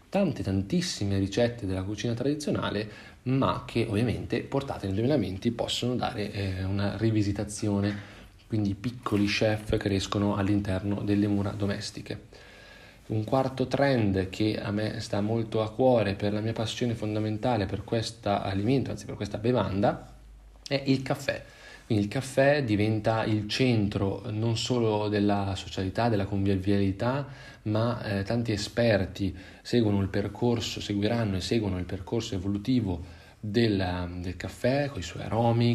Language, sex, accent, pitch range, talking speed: Italian, male, native, 100-120 Hz, 140 wpm